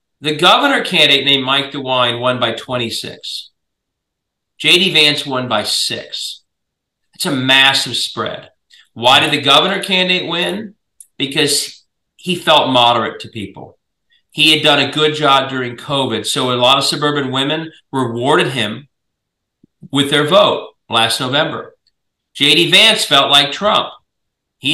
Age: 40-59